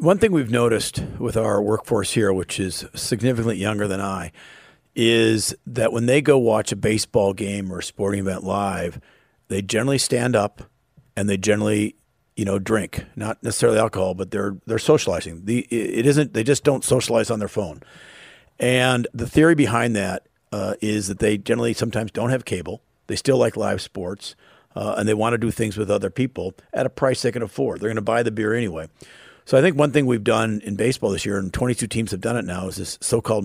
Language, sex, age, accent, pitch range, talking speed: English, male, 50-69, American, 100-120 Hz, 210 wpm